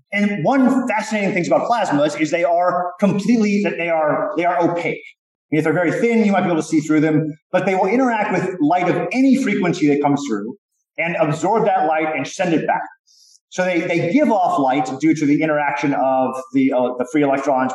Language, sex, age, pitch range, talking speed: English, male, 30-49, 155-220 Hz, 220 wpm